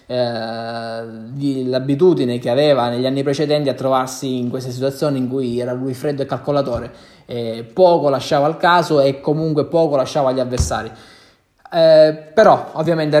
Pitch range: 125-155 Hz